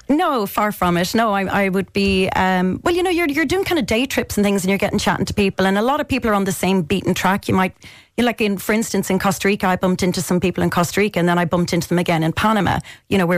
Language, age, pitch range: English, 30-49, 180-205 Hz